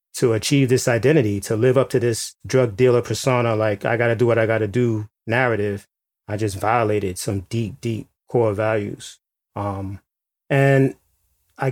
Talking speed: 175 wpm